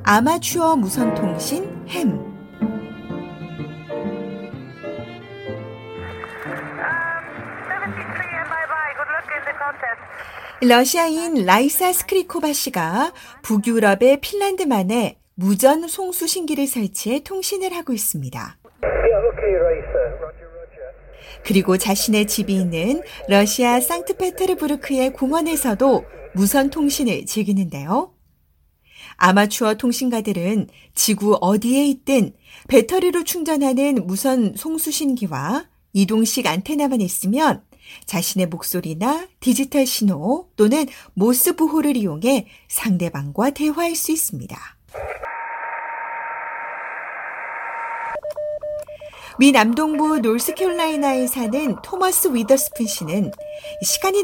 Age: 40-59